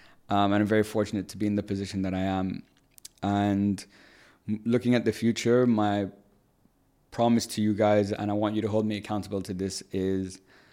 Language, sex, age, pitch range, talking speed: English, male, 20-39, 100-115 Hz, 195 wpm